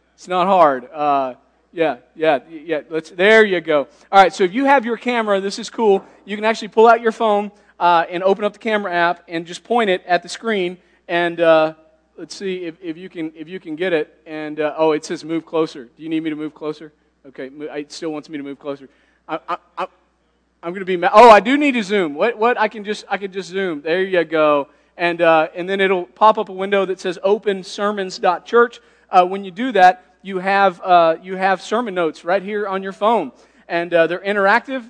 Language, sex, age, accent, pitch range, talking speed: English, male, 40-59, American, 170-215 Hz, 235 wpm